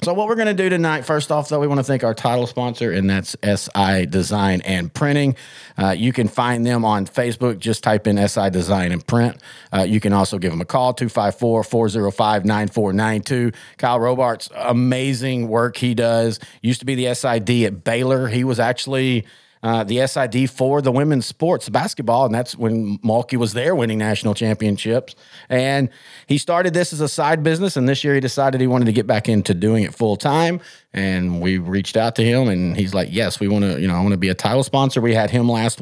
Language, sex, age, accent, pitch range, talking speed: English, male, 40-59, American, 105-135 Hz, 220 wpm